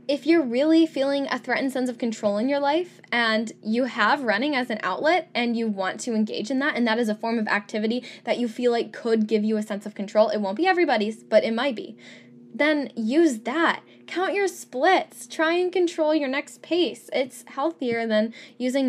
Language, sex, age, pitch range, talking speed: English, female, 10-29, 215-280 Hz, 215 wpm